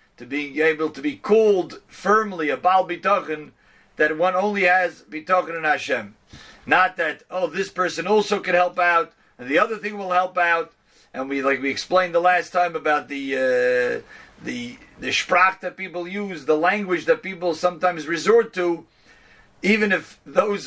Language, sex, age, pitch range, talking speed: English, male, 40-59, 155-190 Hz, 170 wpm